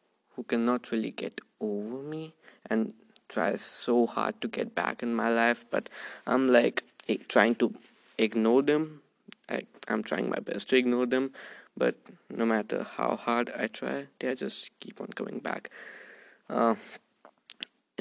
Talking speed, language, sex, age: 145 wpm, English, male, 20-39